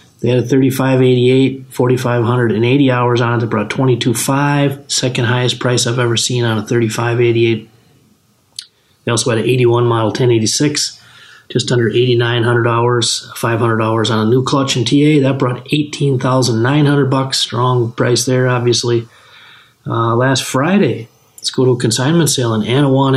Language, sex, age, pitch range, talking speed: English, male, 30-49, 115-135 Hz, 140 wpm